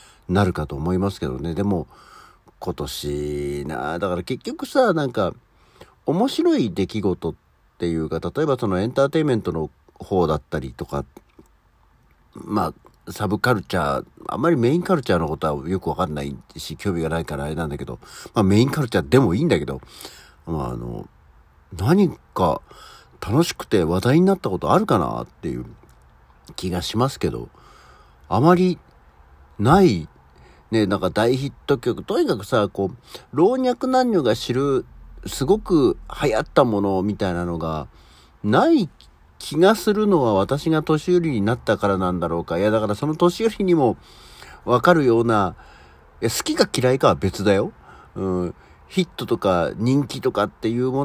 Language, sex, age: Japanese, male, 60-79